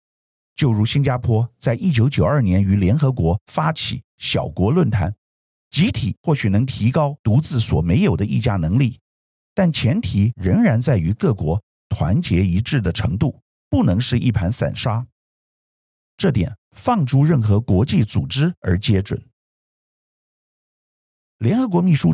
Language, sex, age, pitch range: Chinese, male, 50-69, 95-140 Hz